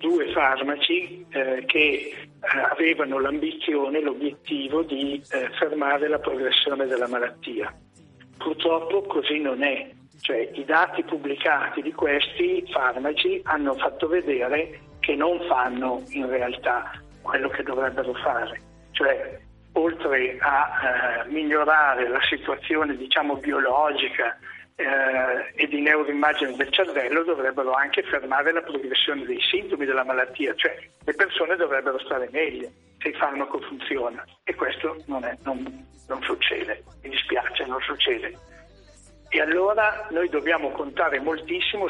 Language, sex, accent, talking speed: Italian, male, native, 125 wpm